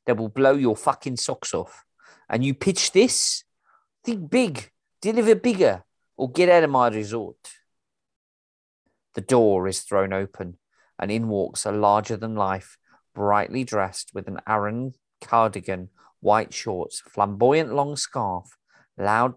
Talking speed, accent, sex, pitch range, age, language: 140 wpm, British, male, 95-155 Hz, 40-59, English